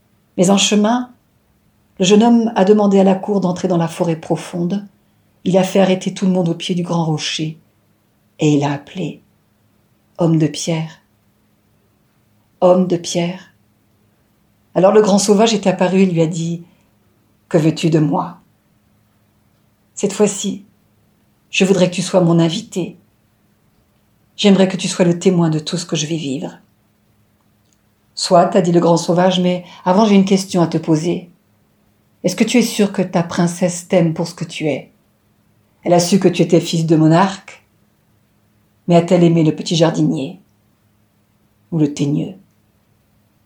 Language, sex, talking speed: French, female, 165 wpm